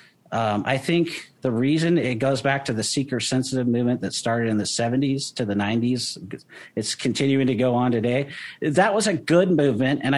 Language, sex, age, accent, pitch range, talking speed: English, male, 50-69, American, 110-140 Hz, 200 wpm